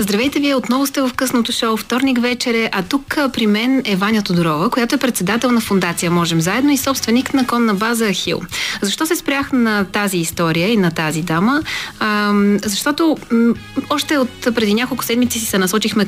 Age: 30-49